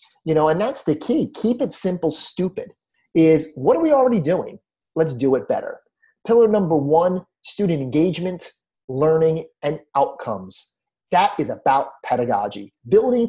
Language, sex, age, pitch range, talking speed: English, male, 30-49, 150-200 Hz, 150 wpm